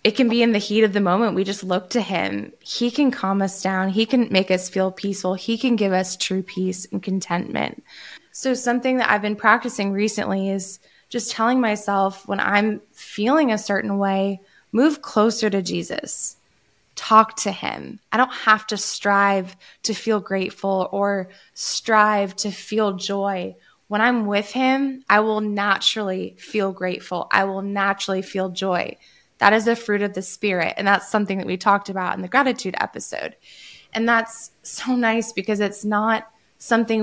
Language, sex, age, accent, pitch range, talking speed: English, female, 20-39, American, 195-225 Hz, 180 wpm